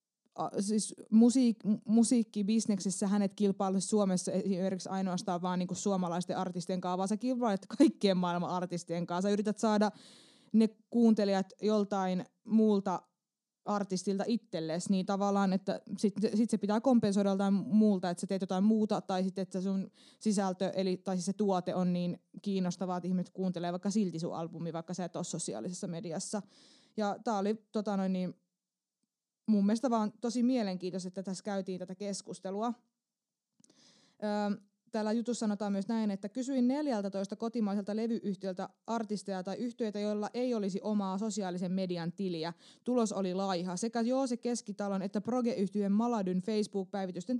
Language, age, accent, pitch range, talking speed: Finnish, 20-39, native, 185-220 Hz, 150 wpm